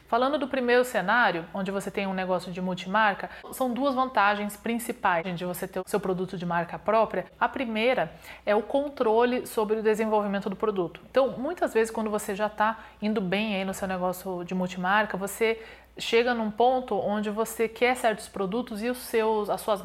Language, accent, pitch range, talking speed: Portuguese, Brazilian, 185-220 Hz, 190 wpm